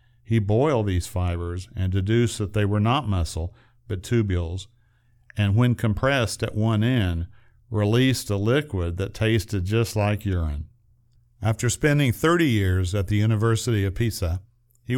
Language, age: English, 50-69